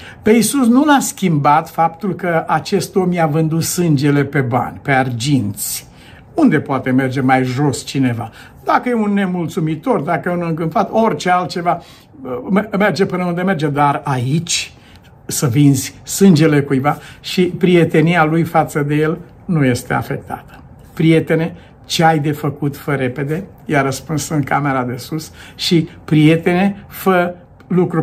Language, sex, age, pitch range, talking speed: Romanian, male, 60-79, 140-185 Hz, 145 wpm